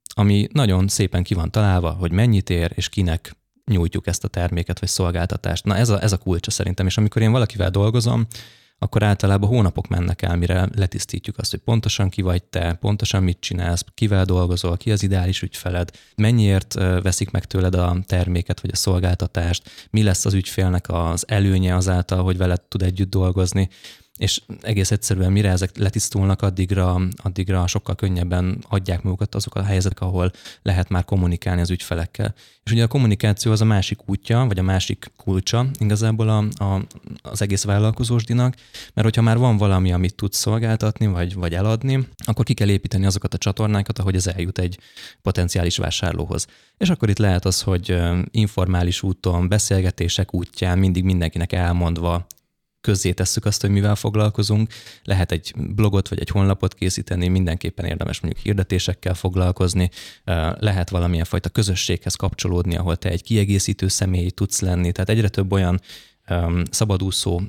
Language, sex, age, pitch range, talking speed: Hungarian, male, 20-39, 90-105 Hz, 165 wpm